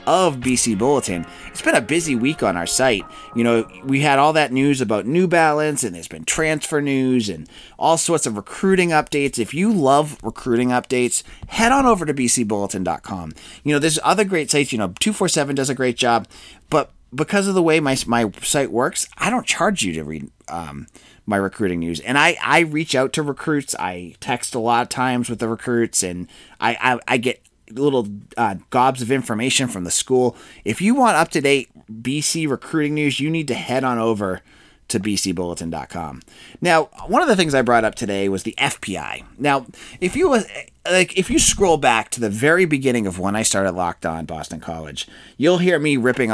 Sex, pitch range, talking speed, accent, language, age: male, 100-150 Hz, 195 wpm, American, English, 30-49